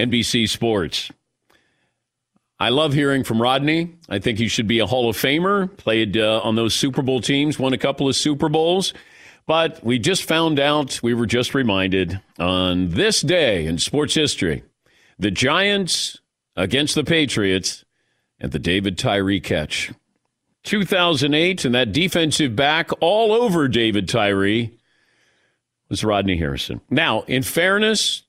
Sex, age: male, 50-69